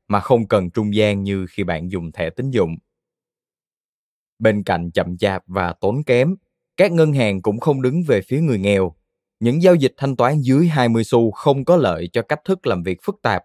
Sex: male